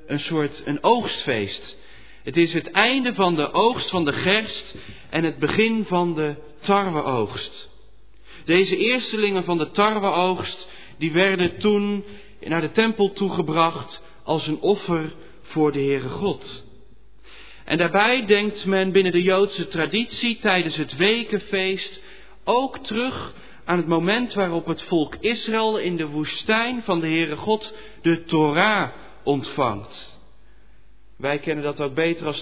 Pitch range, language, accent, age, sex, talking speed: 155-205 Hz, Dutch, Dutch, 40-59, male, 140 wpm